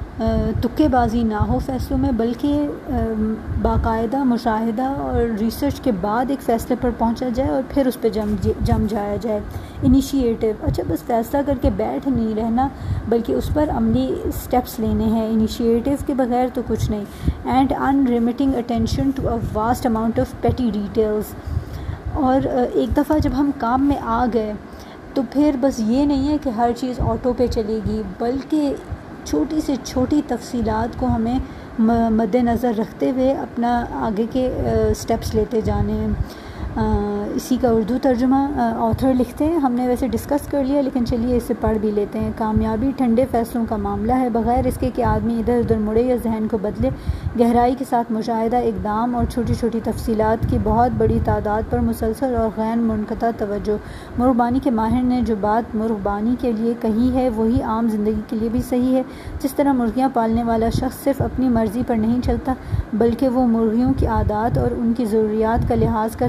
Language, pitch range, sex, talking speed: English, 220-255 Hz, female, 125 wpm